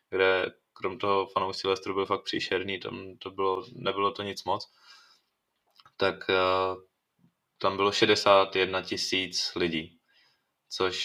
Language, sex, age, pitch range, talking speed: Slovak, male, 20-39, 95-100 Hz, 125 wpm